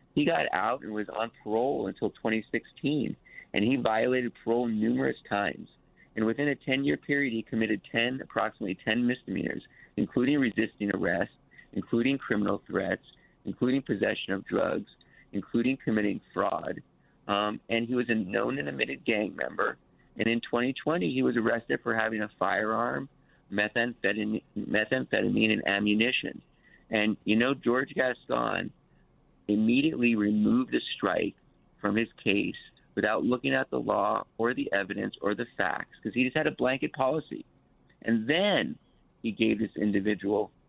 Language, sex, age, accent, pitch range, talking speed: English, male, 50-69, American, 105-125 Hz, 145 wpm